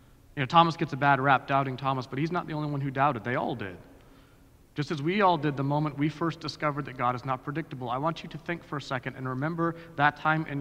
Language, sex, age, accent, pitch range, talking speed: English, male, 40-59, American, 130-165 Hz, 270 wpm